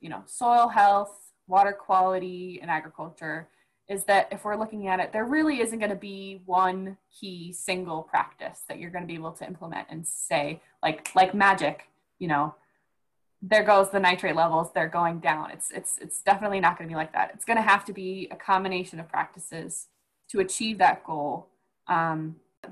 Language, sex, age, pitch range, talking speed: English, female, 20-39, 175-205 Hz, 195 wpm